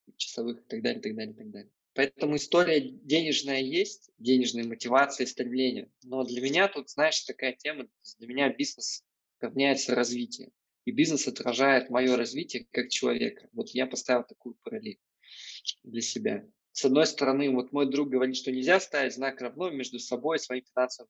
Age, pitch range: 20-39, 125-185 Hz